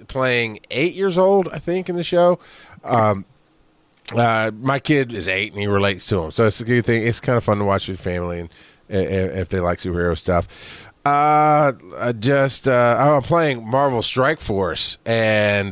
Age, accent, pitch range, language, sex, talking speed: 30-49, American, 100-120 Hz, English, male, 195 wpm